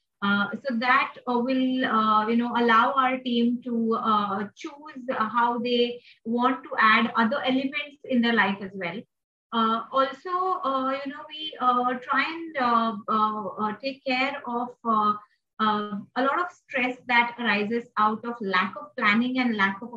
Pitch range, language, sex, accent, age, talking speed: 225-265 Hz, English, female, Indian, 30-49, 170 wpm